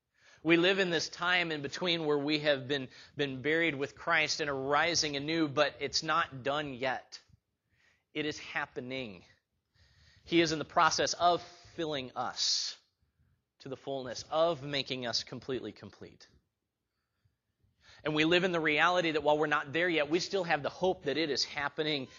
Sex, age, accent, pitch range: male, 30-49, American, 115-155 Hz